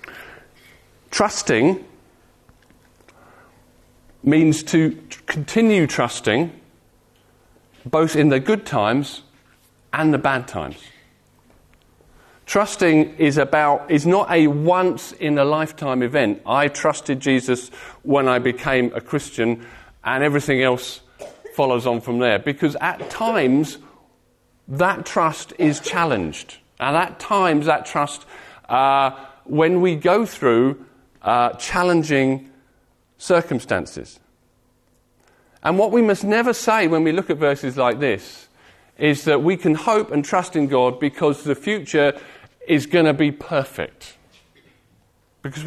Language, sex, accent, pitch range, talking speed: English, male, British, 125-165 Hz, 115 wpm